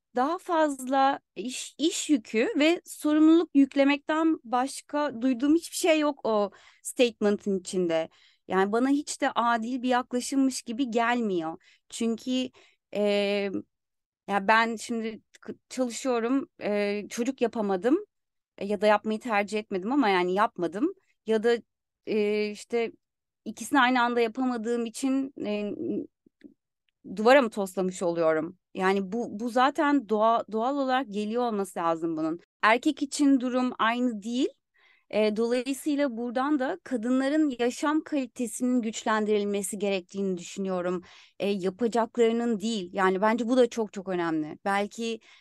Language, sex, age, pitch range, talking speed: Turkish, female, 30-49, 205-260 Hz, 125 wpm